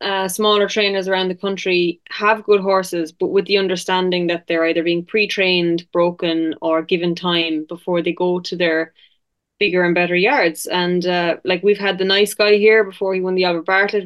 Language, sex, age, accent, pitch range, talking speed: English, female, 20-39, Irish, 180-205 Hz, 195 wpm